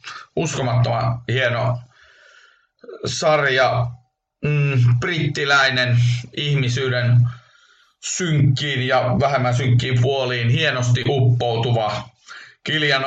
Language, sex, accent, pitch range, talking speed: Finnish, male, native, 120-135 Hz, 60 wpm